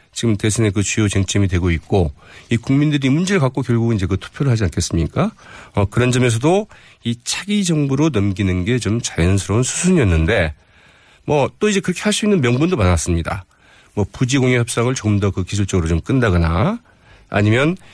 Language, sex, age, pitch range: Korean, male, 40-59, 95-135 Hz